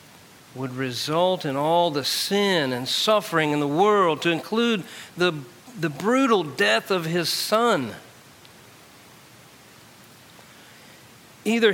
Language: English